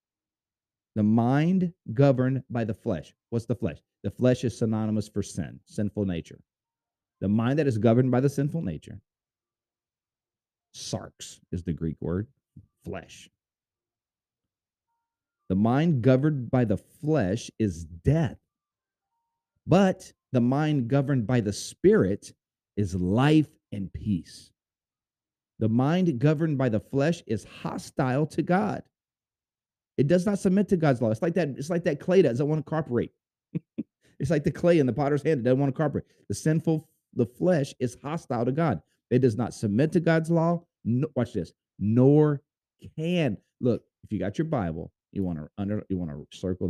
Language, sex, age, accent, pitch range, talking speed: English, male, 40-59, American, 100-150 Hz, 165 wpm